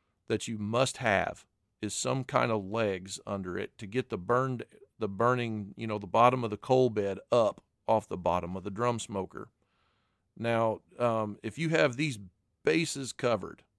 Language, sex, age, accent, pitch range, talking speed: English, male, 40-59, American, 100-125 Hz, 180 wpm